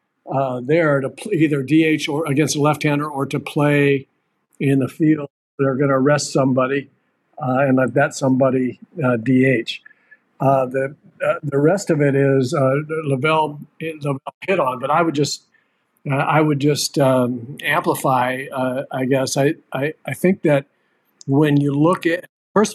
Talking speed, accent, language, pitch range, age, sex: 160 wpm, American, English, 135-155 Hz, 50-69, male